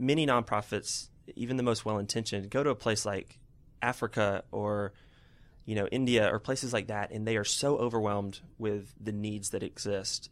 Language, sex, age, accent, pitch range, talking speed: English, male, 20-39, American, 105-120 Hz, 175 wpm